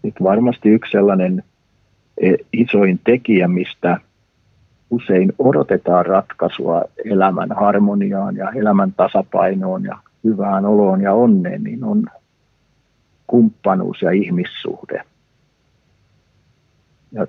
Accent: native